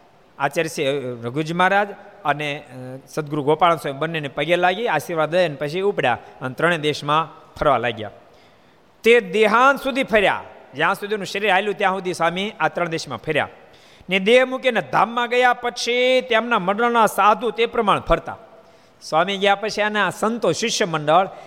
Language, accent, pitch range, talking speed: Gujarati, native, 150-210 Hz, 55 wpm